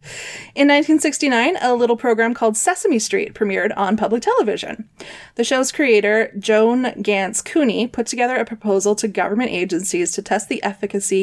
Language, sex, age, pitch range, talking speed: English, female, 20-39, 200-240 Hz, 155 wpm